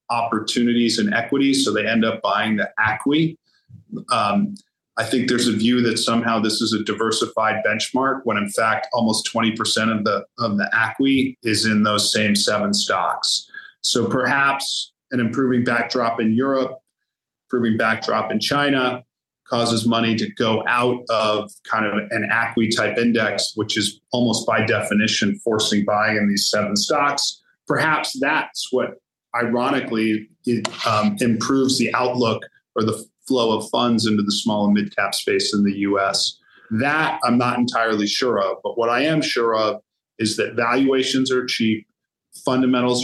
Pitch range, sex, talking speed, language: 110-130 Hz, male, 160 wpm, English